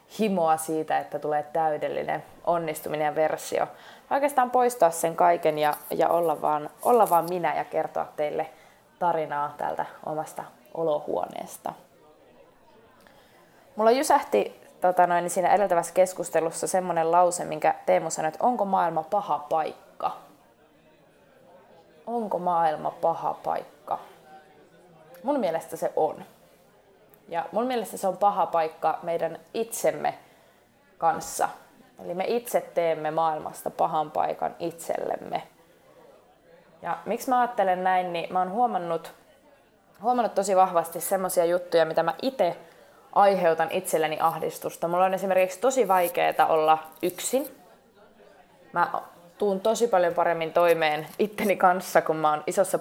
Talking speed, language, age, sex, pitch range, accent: 120 wpm, Finnish, 20-39, female, 160-195 Hz, native